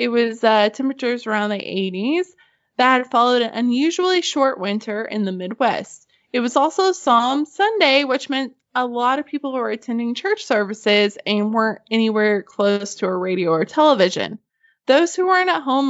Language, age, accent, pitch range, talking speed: English, 20-39, American, 225-295 Hz, 170 wpm